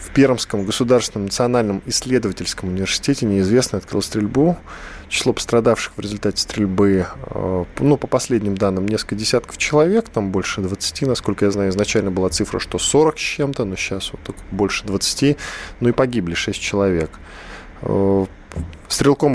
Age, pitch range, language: 20-39, 90-120 Hz, Russian